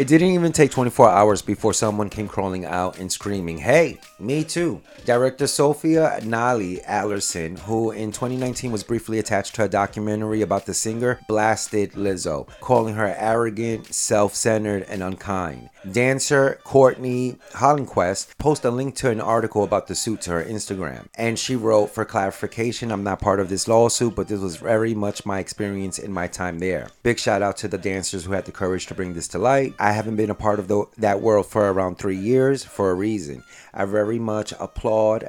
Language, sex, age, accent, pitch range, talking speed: English, male, 30-49, American, 95-115 Hz, 190 wpm